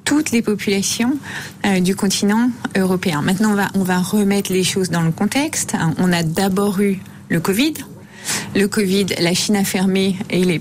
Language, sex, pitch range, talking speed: French, female, 190-230 Hz, 175 wpm